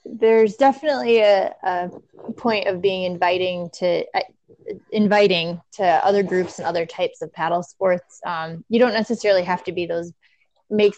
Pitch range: 170-200 Hz